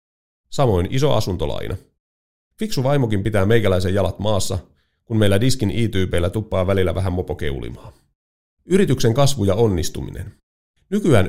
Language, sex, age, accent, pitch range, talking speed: Finnish, male, 30-49, native, 95-130 Hz, 120 wpm